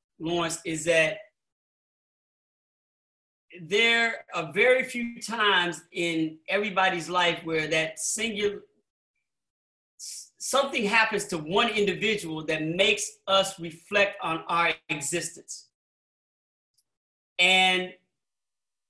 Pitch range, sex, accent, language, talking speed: 170-225 Hz, male, American, English, 85 wpm